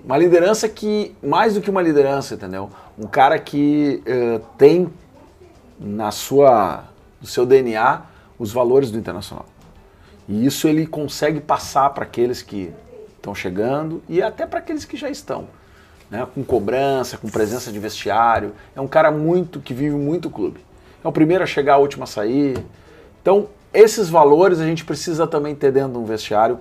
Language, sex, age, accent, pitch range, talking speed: Portuguese, male, 40-59, Brazilian, 110-155 Hz, 170 wpm